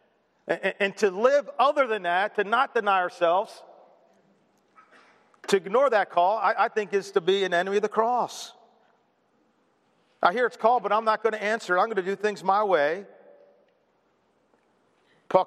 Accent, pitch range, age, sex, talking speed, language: American, 200-270 Hz, 50-69, male, 165 wpm, English